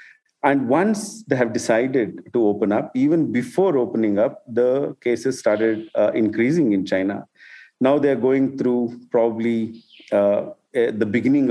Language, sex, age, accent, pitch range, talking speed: English, male, 50-69, Indian, 110-150 Hz, 140 wpm